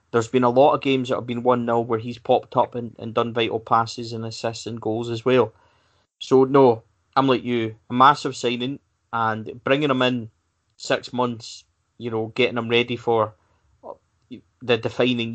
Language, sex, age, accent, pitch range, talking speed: English, male, 30-49, British, 115-125 Hz, 185 wpm